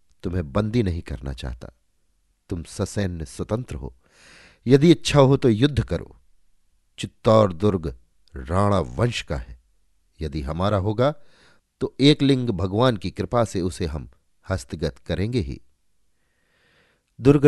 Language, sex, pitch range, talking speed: Hindi, male, 85-120 Hz, 125 wpm